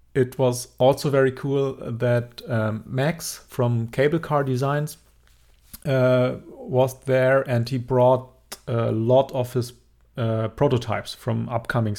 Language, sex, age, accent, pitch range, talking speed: English, male, 30-49, German, 105-130 Hz, 130 wpm